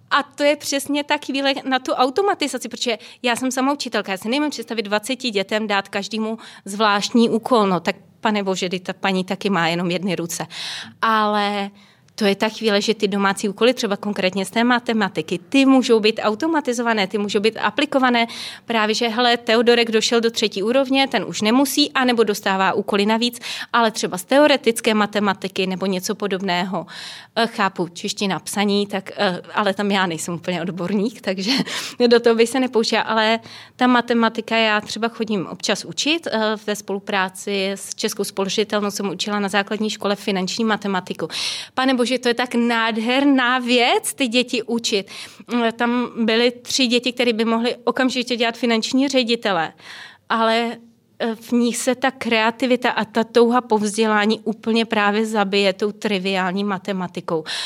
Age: 30-49